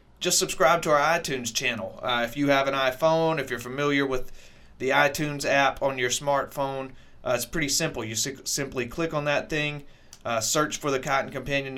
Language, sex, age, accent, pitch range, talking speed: English, male, 30-49, American, 125-145 Hz, 200 wpm